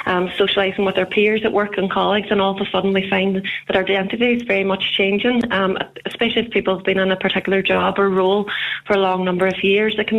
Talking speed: 255 wpm